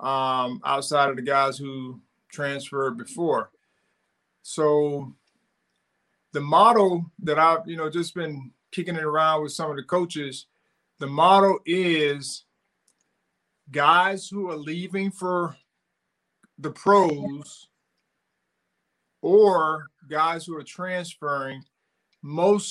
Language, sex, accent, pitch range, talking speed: English, male, American, 145-175 Hz, 110 wpm